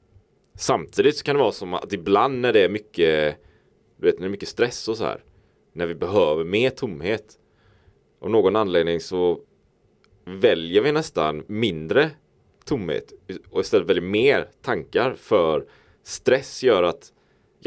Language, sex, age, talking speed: Swedish, male, 30-49, 145 wpm